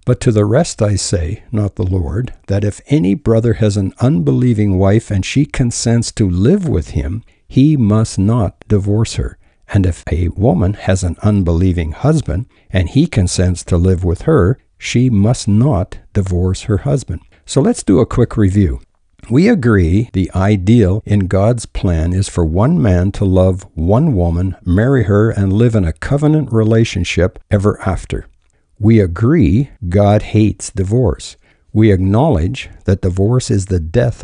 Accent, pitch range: American, 95-120 Hz